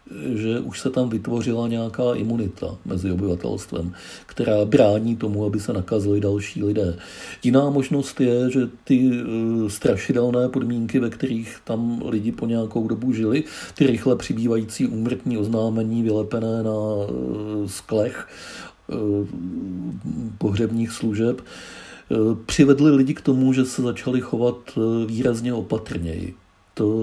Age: 50-69